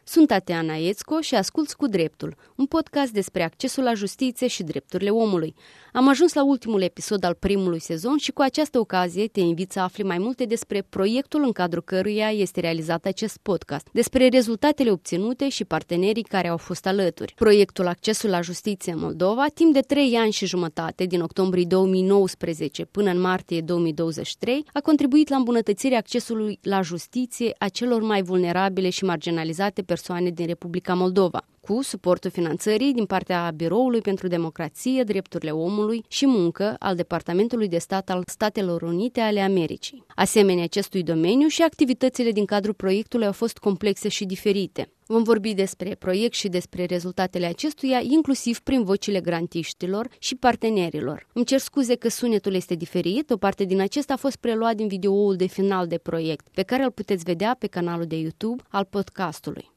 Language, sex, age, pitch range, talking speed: Romanian, female, 20-39, 180-235 Hz, 170 wpm